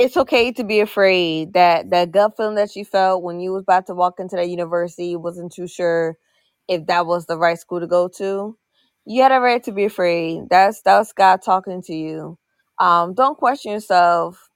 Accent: American